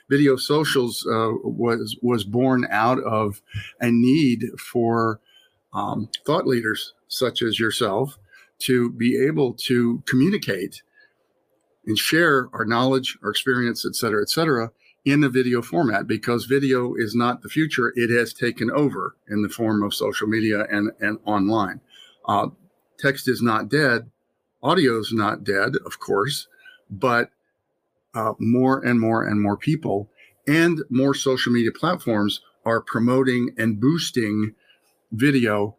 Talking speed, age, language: 140 wpm, 50-69, English